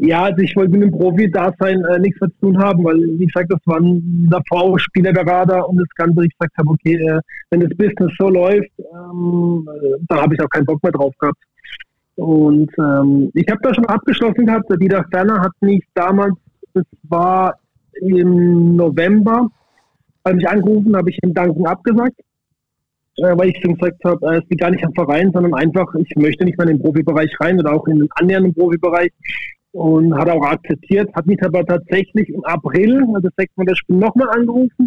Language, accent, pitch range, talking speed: German, German, 165-190 Hz, 200 wpm